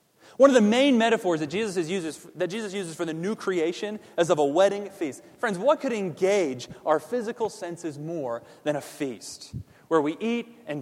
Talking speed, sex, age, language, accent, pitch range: 175 wpm, male, 30-49, English, American, 145-205 Hz